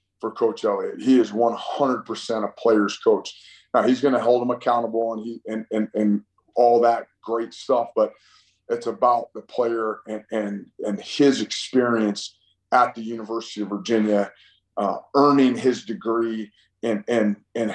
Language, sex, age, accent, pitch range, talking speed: English, male, 30-49, American, 100-130 Hz, 160 wpm